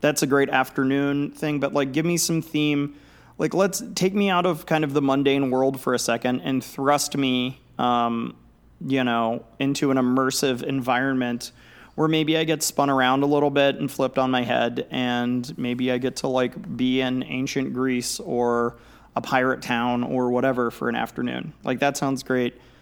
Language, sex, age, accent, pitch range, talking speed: English, male, 30-49, American, 125-145 Hz, 190 wpm